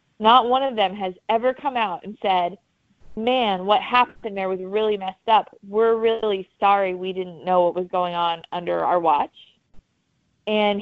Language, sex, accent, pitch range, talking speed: English, female, American, 185-225 Hz, 175 wpm